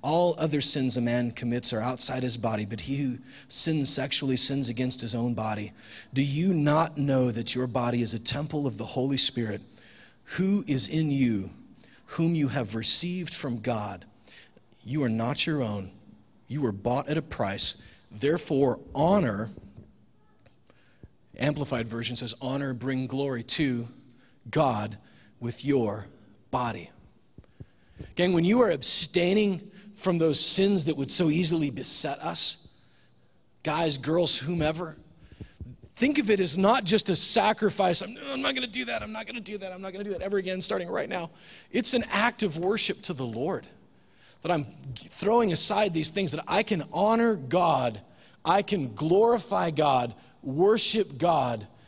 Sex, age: male, 40-59